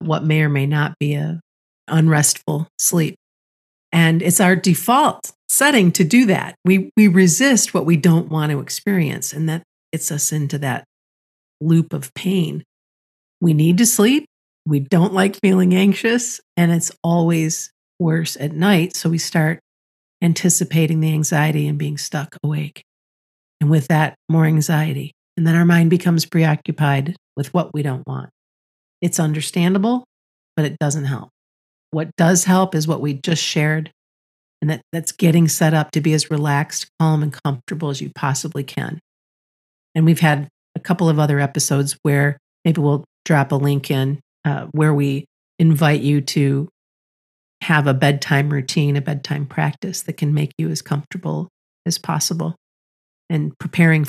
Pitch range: 145-170 Hz